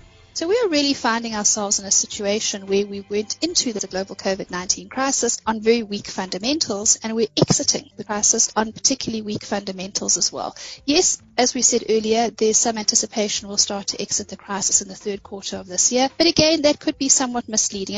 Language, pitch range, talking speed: English, 200-260 Hz, 200 wpm